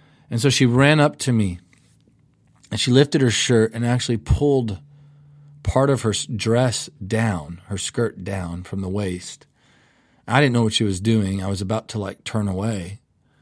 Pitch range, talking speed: 105-130 Hz, 180 wpm